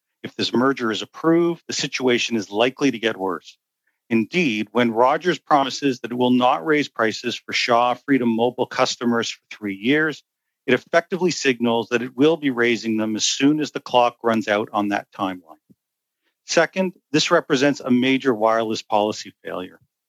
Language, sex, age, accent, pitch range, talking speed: English, male, 50-69, American, 115-145 Hz, 170 wpm